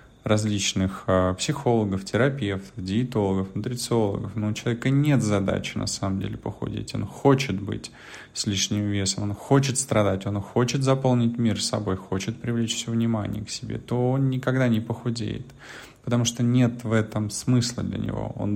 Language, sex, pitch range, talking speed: Russian, male, 100-125 Hz, 150 wpm